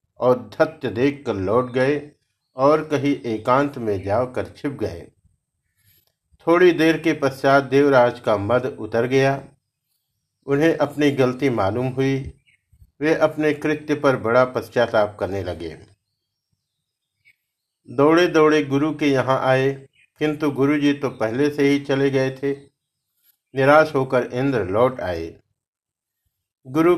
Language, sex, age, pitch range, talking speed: Hindi, male, 50-69, 115-145 Hz, 120 wpm